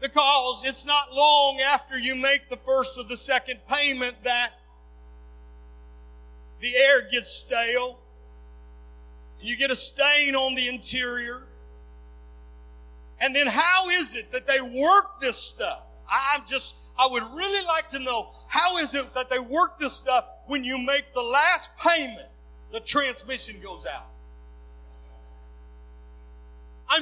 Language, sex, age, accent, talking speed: English, male, 50-69, American, 140 wpm